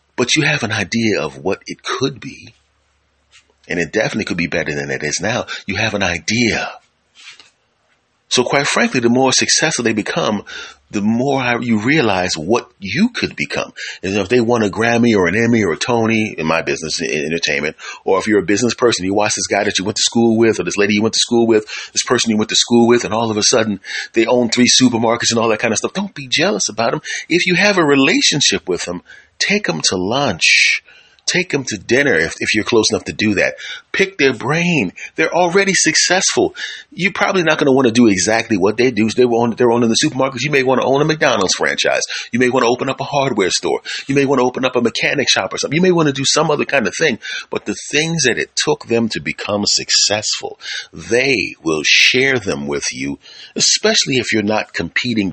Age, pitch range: 40-59, 110-140 Hz